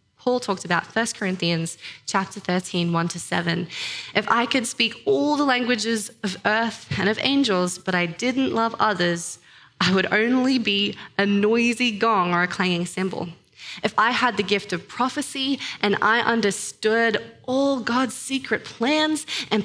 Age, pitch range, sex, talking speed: 20-39, 185-245 Hz, female, 160 wpm